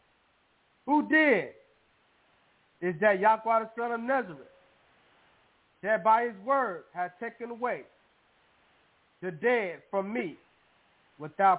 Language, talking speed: English, 110 wpm